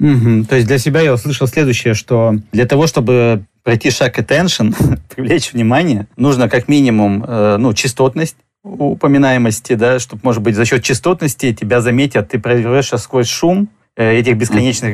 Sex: male